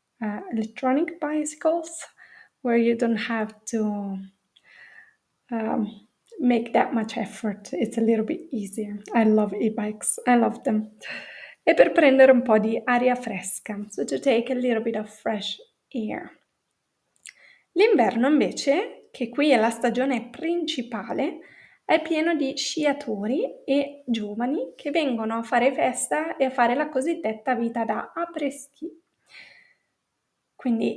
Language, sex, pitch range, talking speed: Italian, female, 225-300 Hz, 135 wpm